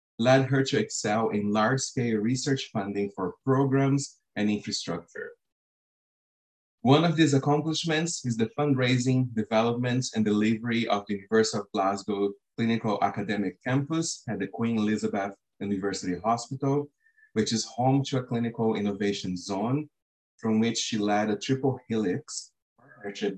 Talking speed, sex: 135 wpm, male